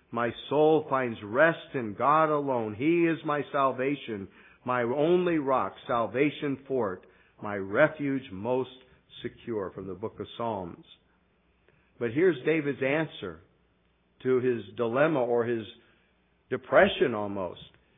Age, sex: 50-69, male